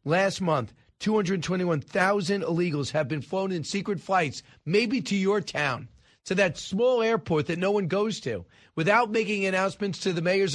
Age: 40-59